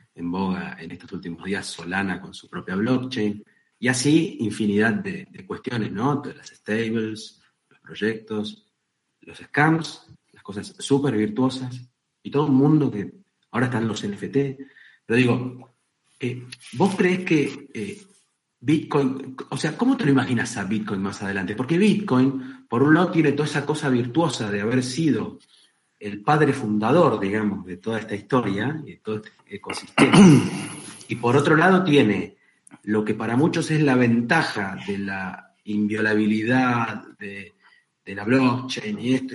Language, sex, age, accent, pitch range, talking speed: Spanish, male, 40-59, Argentinian, 110-150 Hz, 155 wpm